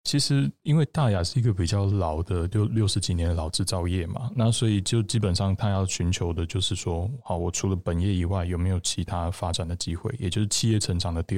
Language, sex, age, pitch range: Chinese, male, 20-39, 85-105 Hz